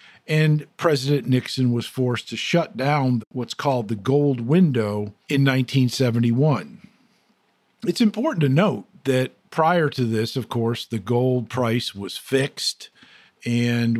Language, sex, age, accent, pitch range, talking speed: English, male, 50-69, American, 120-155 Hz, 135 wpm